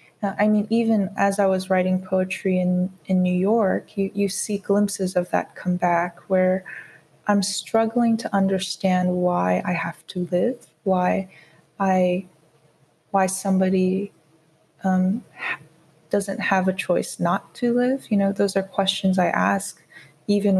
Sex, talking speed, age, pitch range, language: female, 145 wpm, 20-39, 170-200 Hz, English